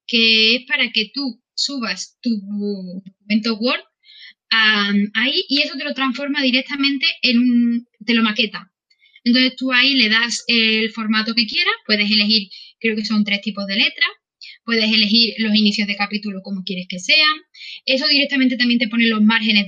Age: 10-29